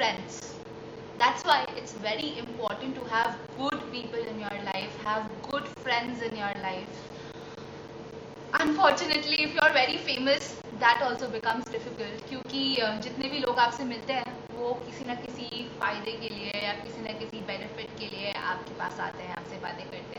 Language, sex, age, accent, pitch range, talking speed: Hindi, female, 20-39, native, 225-285 Hz, 170 wpm